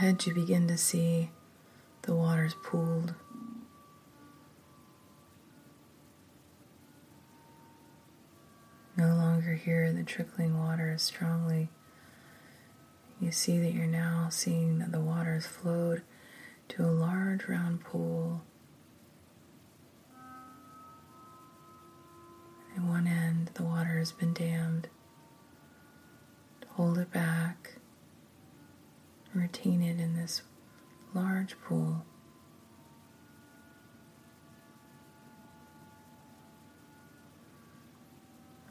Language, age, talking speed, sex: English, 30-49, 75 wpm, female